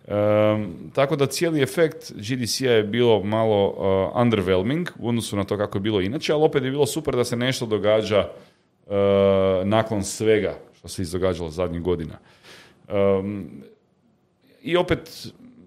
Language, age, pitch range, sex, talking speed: Croatian, 30-49, 95-120 Hz, male, 150 wpm